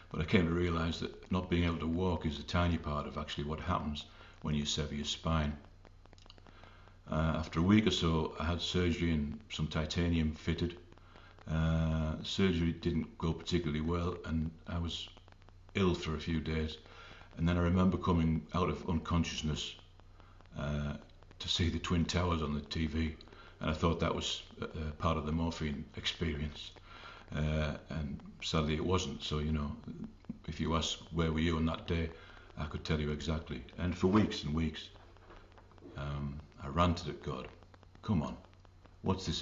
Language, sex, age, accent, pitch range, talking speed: English, male, 60-79, British, 80-90 Hz, 175 wpm